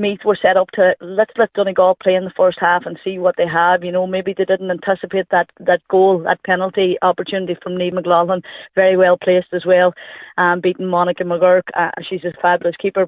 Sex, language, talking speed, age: female, English, 215 wpm, 30-49